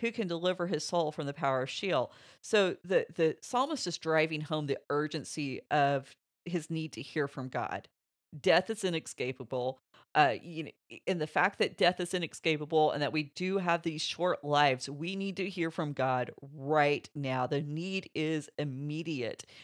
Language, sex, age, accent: English, female, 40-59, American